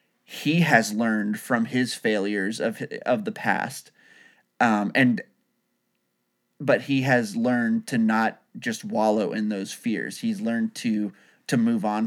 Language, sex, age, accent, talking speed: English, male, 30-49, American, 145 wpm